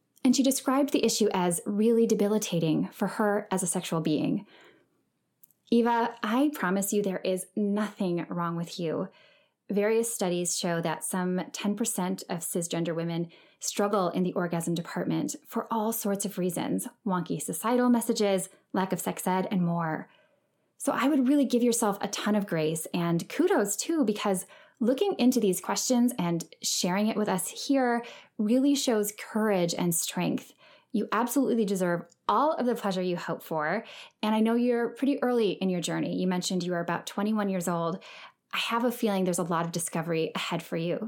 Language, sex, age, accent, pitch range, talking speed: English, female, 10-29, American, 175-235 Hz, 175 wpm